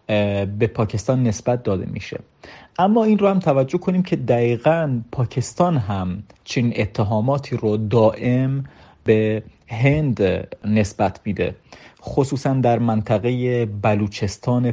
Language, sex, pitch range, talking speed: Persian, male, 105-125 Hz, 110 wpm